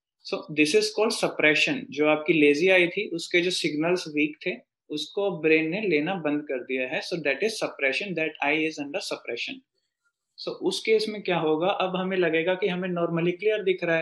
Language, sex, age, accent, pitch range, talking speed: English, male, 20-39, Indian, 150-185 Hz, 195 wpm